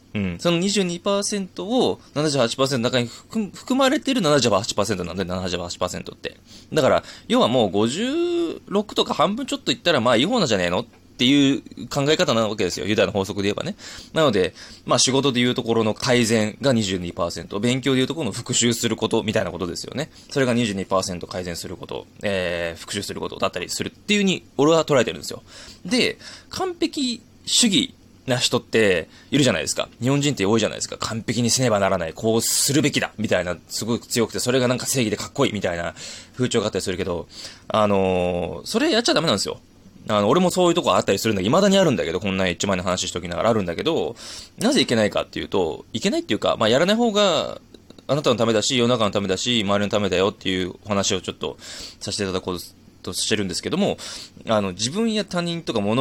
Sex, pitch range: male, 95-160 Hz